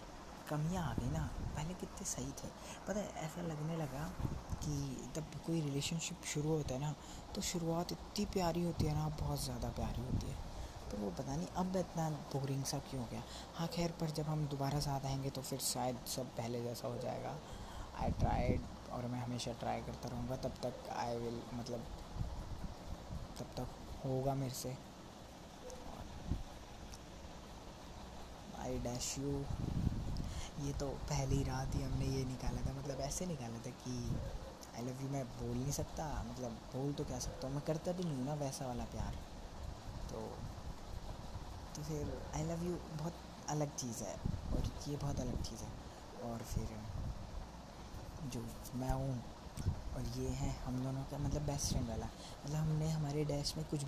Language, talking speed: Hindi, 170 wpm